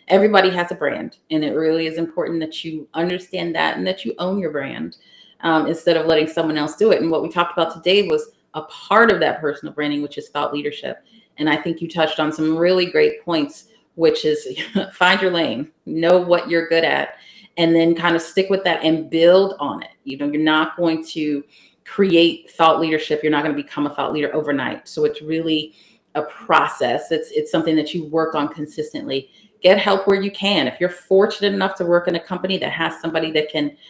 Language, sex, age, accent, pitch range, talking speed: English, female, 30-49, American, 155-185 Hz, 220 wpm